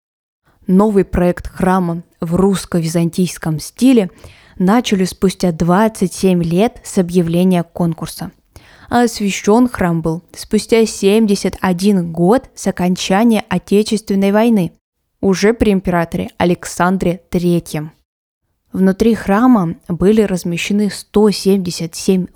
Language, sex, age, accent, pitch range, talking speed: Russian, female, 20-39, native, 175-215 Hz, 90 wpm